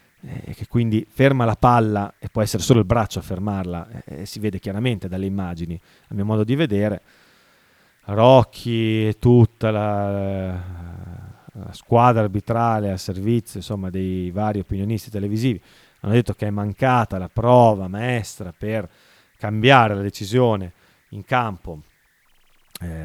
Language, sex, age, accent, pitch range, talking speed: Italian, male, 30-49, native, 95-115 Hz, 140 wpm